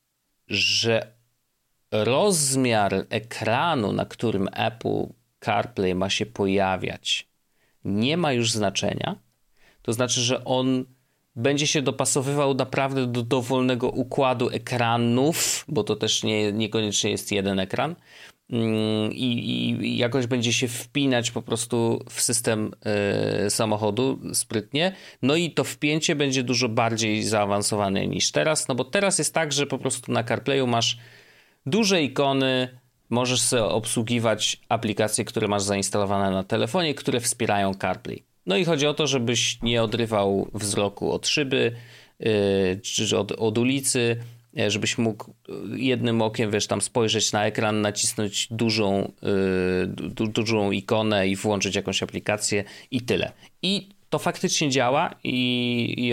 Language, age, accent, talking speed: Polish, 30-49, native, 130 wpm